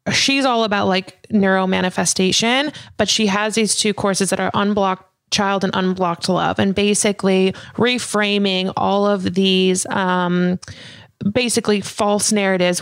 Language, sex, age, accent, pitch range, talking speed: English, female, 20-39, American, 185-215 Hz, 135 wpm